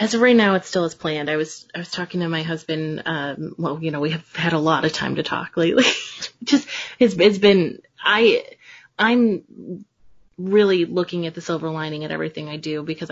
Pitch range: 155-185 Hz